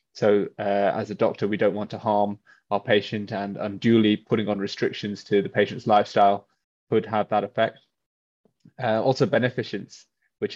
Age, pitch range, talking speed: 20-39, 100-110 Hz, 165 wpm